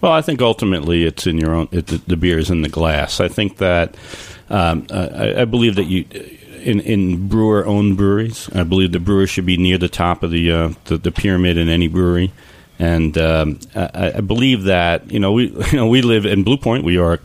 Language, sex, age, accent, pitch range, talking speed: English, male, 40-59, American, 85-105 Hz, 235 wpm